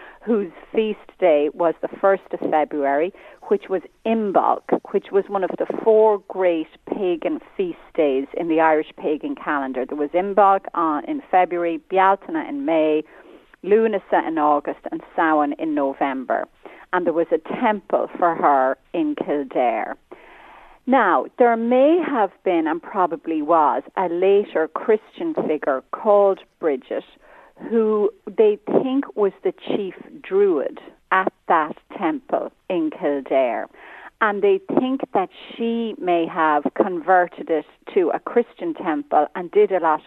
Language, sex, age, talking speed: English, female, 40-59, 140 wpm